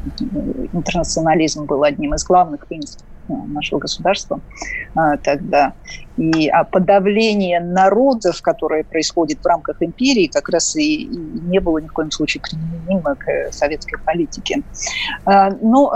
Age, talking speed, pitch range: 50-69, 115 wpm, 185-245 Hz